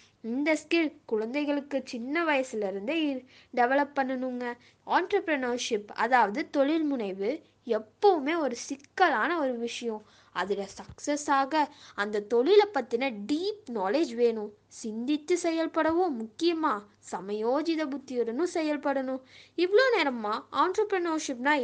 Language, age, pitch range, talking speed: Tamil, 20-39, 235-320 Hz, 90 wpm